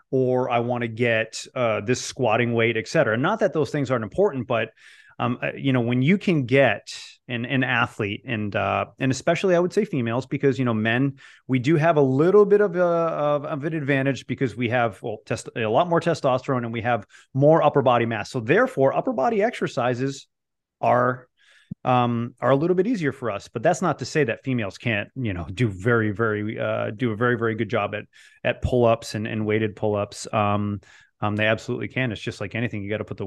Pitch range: 115-140 Hz